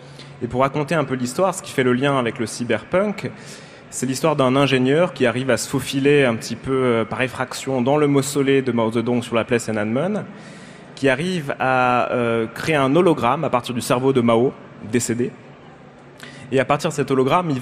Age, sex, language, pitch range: 20-39, male, French, 125-150 Hz